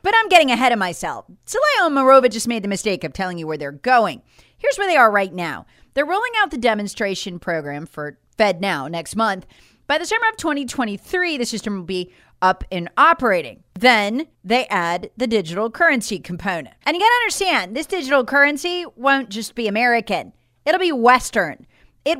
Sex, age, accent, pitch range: female, 40-59, American, 195-320 Hz